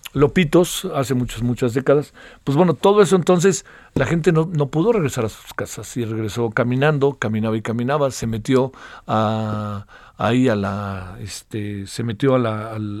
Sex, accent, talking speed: male, Mexican, 170 wpm